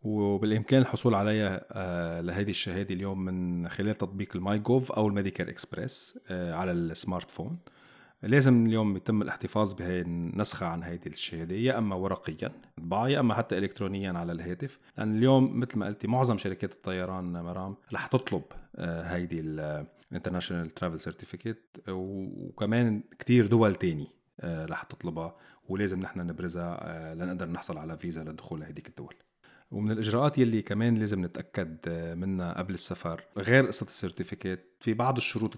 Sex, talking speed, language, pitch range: male, 135 wpm, Arabic, 90-110 Hz